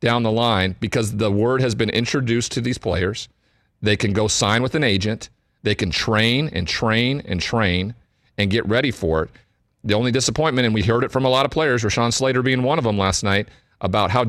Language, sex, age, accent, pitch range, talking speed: English, male, 40-59, American, 100-120 Hz, 225 wpm